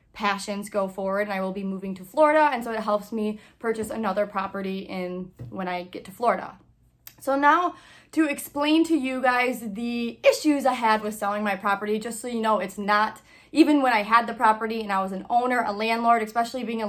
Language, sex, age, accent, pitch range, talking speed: English, female, 20-39, American, 195-225 Hz, 215 wpm